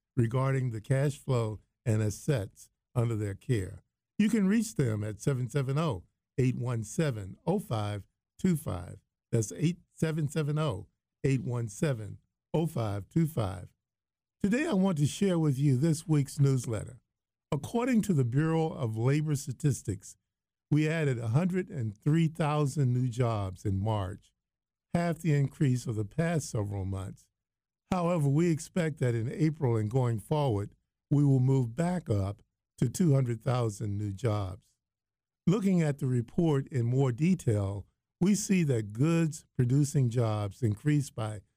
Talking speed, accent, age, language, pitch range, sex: 120 wpm, American, 50-69, English, 110-155 Hz, male